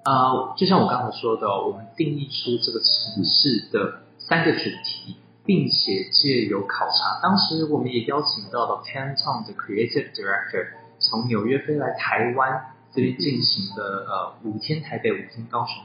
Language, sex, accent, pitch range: Chinese, male, native, 110-160 Hz